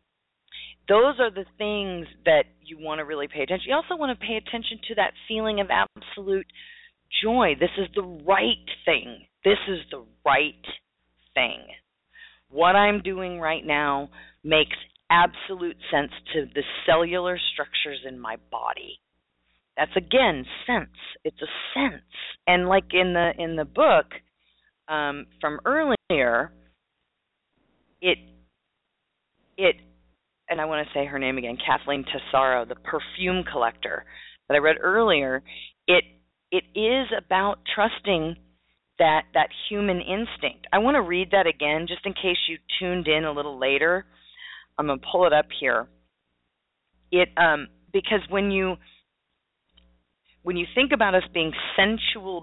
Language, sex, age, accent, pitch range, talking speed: English, female, 40-59, American, 135-200 Hz, 145 wpm